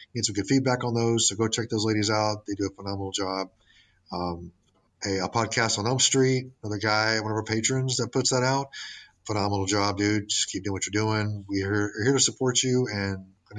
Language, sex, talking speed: English, male, 225 wpm